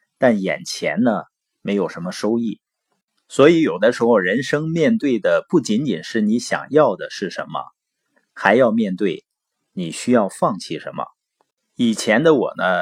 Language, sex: Chinese, male